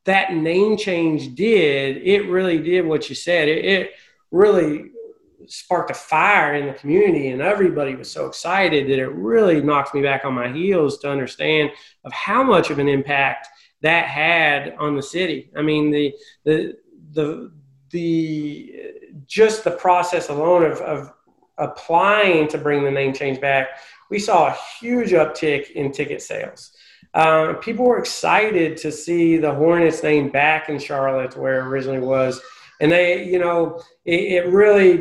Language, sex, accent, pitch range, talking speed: English, male, American, 145-175 Hz, 165 wpm